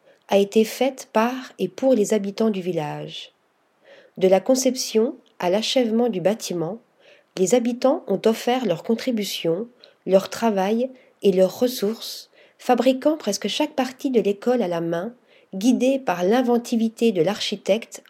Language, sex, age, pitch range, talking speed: French, female, 40-59, 190-250 Hz, 140 wpm